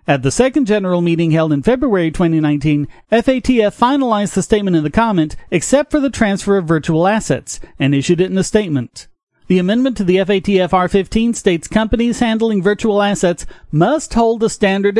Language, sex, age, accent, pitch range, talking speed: English, male, 40-59, American, 180-245 Hz, 175 wpm